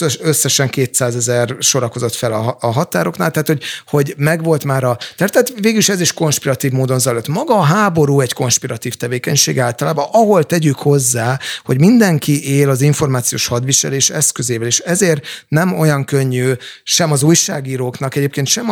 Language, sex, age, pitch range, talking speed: Hungarian, male, 30-49, 130-155 Hz, 150 wpm